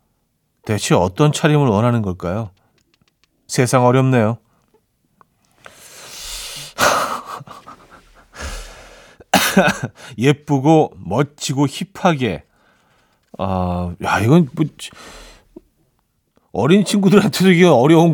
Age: 40-59